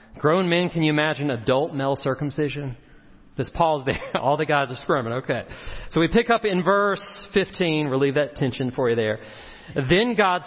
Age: 40-59